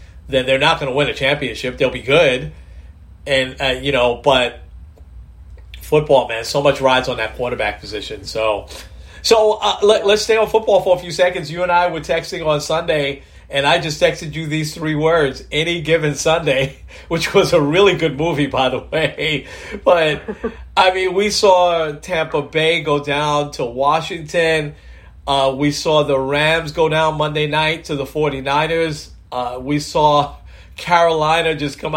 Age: 40-59